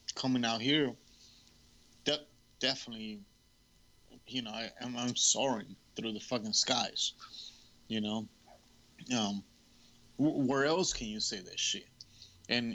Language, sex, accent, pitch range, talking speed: English, male, American, 110-130 Hz, 125 wpm